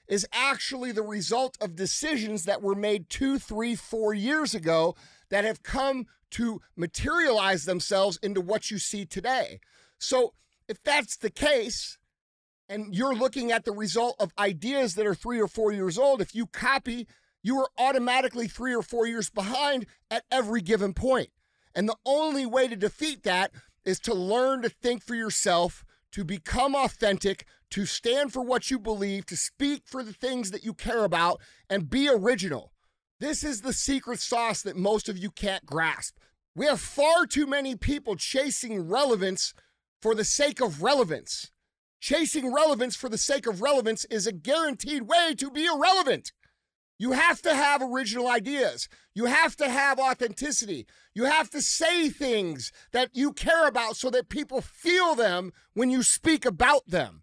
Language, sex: English, male